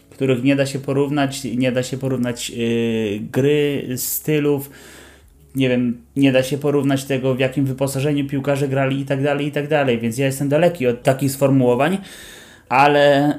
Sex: male